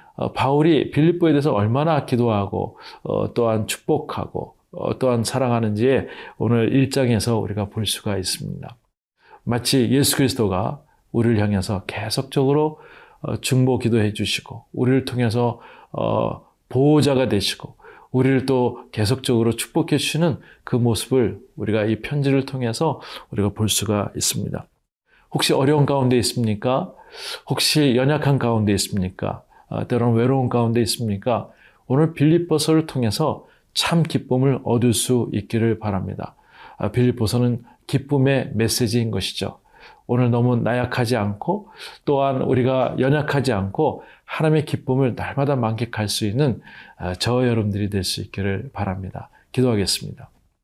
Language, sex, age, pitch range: Korean, male, 40-59, 110-135 Hz